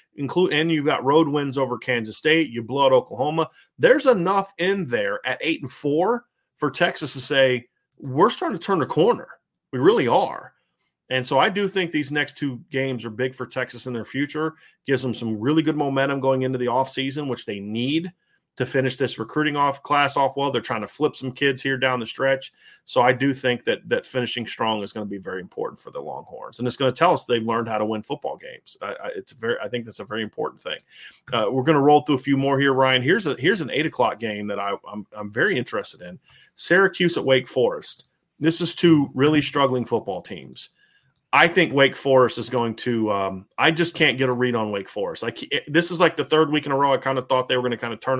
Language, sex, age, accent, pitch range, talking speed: English, male, 30-49, American, 125-155 Hz, 240 wpm